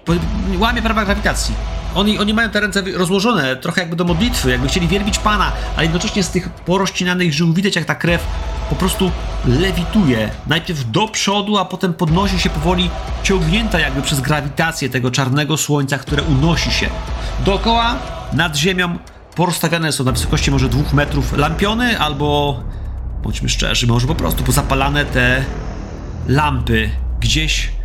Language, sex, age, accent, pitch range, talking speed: Polish, male, 40-59, native, 115-175 Hz, 150 wpm